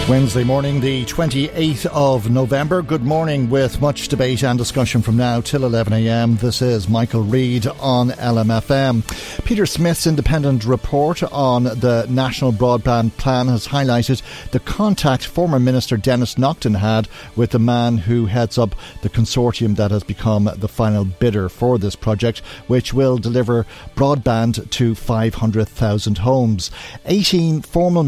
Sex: male